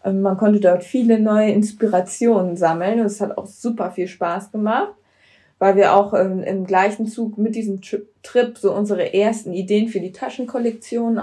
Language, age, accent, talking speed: German, 20-39, German, 175 wpm